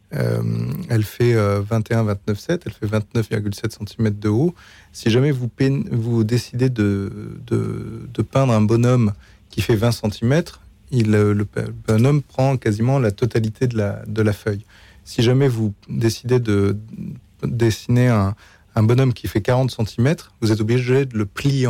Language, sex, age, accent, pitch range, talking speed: French, male, 30-49, French, 105-125 Hz, 150 wpm